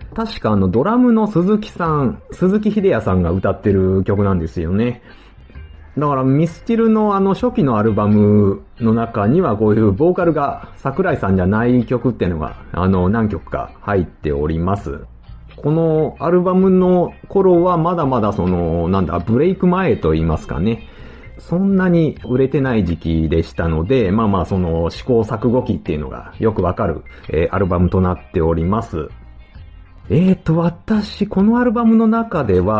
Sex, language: male, Japanese